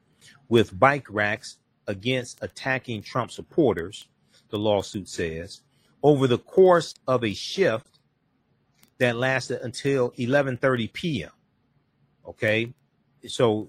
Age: 40-59